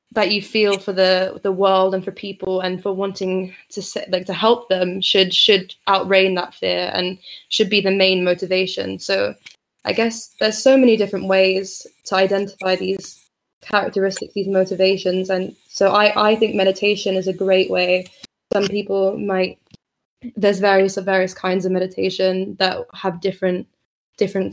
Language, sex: English, female